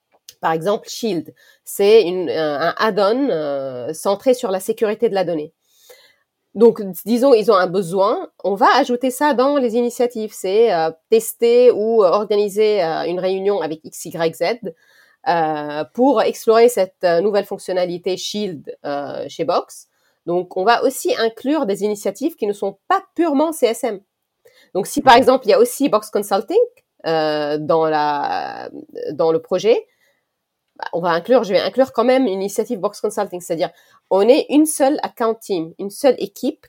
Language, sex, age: French, female, 30-49